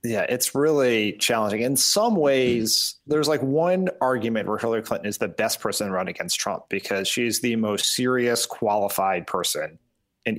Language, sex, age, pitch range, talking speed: English, male, 30-49, 110-135 Hz, 175 wpm